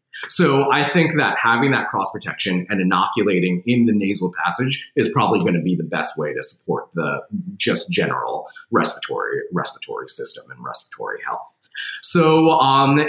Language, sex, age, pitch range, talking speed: English, male, 30-49, 100-165 Hz, 155 wpm